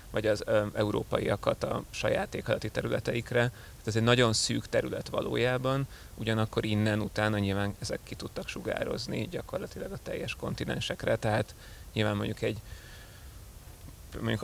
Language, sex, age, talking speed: Hungarian, male, 30-49, 125 wpm